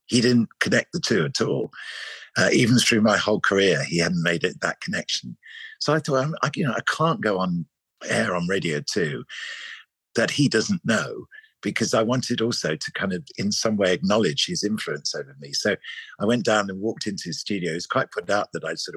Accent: British